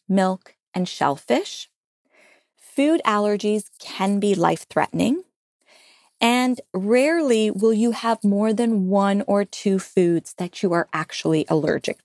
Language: English